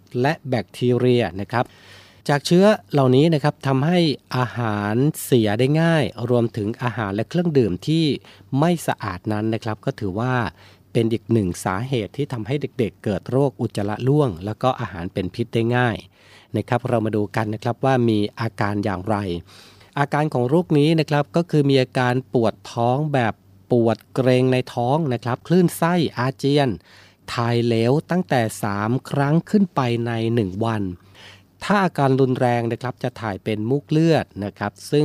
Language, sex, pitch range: Thai, male, 105-135 Hz